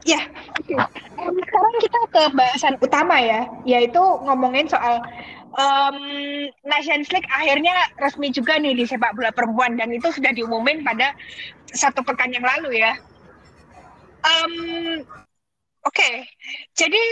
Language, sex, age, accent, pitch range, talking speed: Indonesian, female, 20-39, native, 235-295 Hz, 135 wpm